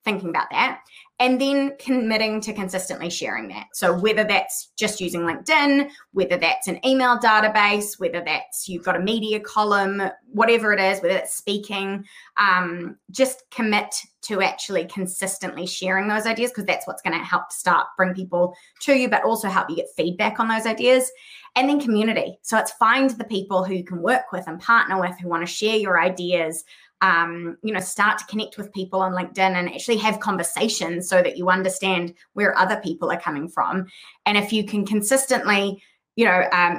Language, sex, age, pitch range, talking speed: English, female, 20-39, 180-225 Hz, 190 wpm